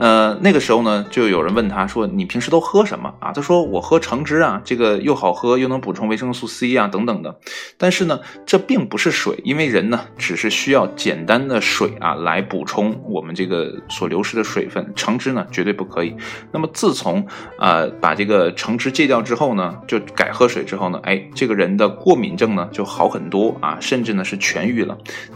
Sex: male